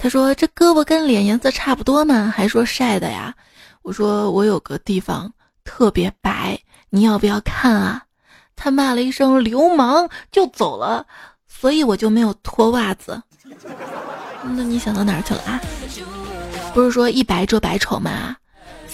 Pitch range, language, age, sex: 205-255 Hz, Chinese, 20-39, female